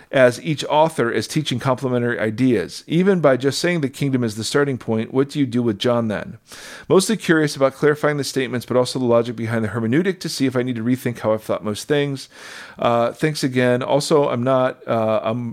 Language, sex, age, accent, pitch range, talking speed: English, male, 40-59, American, 120-150 Hz, 220 wpm